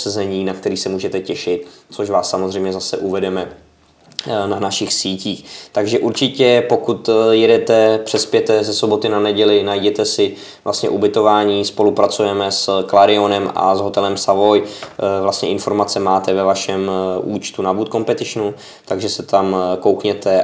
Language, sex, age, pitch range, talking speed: Czech, male, 20-39, 100-110 Hz, 140 wpm